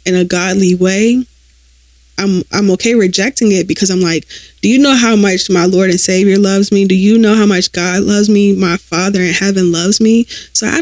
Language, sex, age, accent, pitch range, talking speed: English, female, 20-39, American, 175-220 Hz, 215 wpm